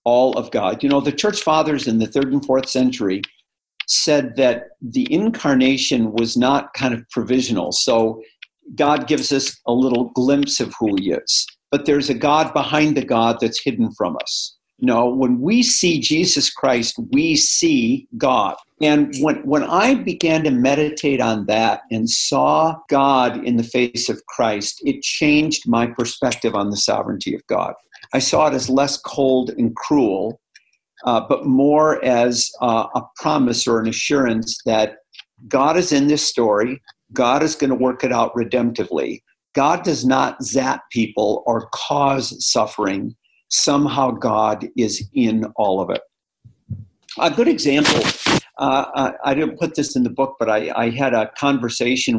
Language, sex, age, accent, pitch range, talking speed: English, male, 50-69, American, 115-145 Hz, 165 wpm